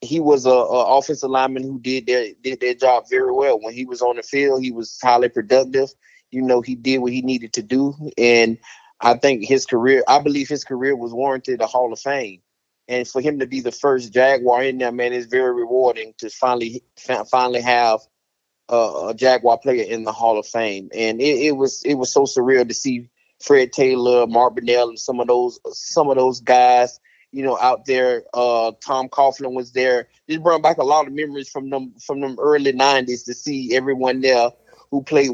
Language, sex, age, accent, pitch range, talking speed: English, male, 20-39, American, 125-140 Hz, 210 wpm